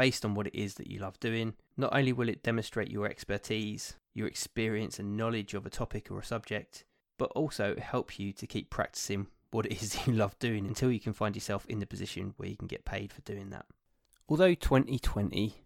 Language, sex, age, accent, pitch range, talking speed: English, male, 20-39, British, 100-120 Hz, 220 wpm